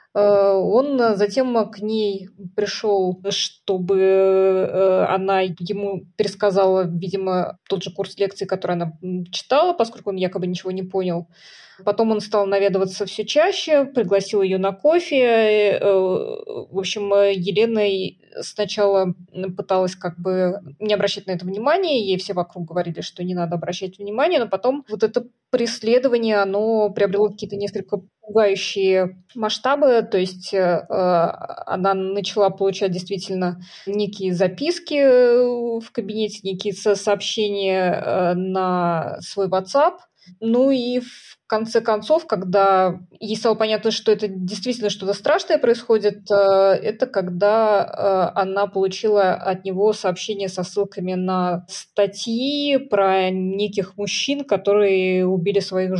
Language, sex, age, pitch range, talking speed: Russian, female, 20-39, 190-220 Hz, 125 wpm